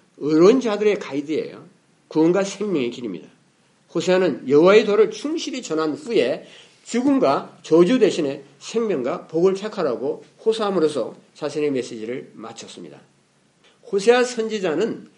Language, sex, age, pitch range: Korean, male, 50-69, 155-220 Hz